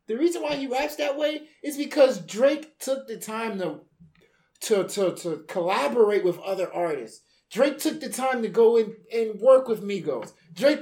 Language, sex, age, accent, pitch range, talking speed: English, male, 30-49, American, 165-245 Hz, 185 wpm